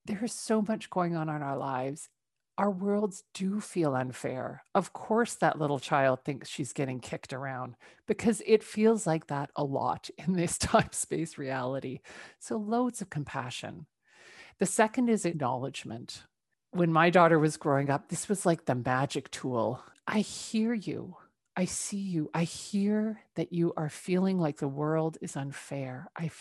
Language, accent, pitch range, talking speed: English, American, 150-195 Hz, 165 wpm